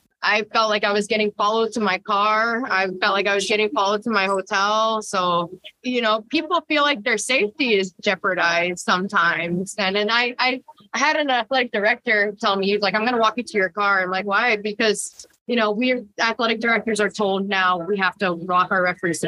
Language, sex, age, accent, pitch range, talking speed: English, female, 20-39, American, 185-240 Hz, 220 wpm